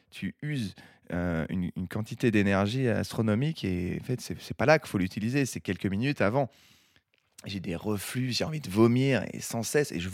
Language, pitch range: French, 100-135 Hz